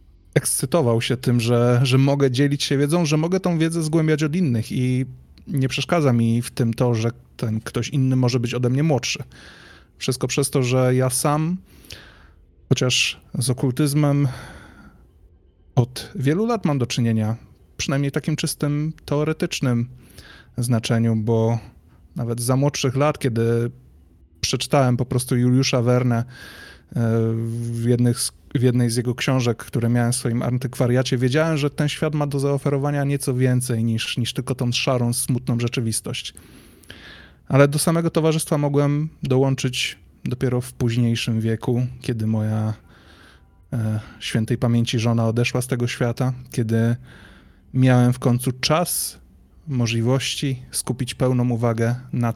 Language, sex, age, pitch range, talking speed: Polish, male, 20-39, 115-140 Hz, 140 wpm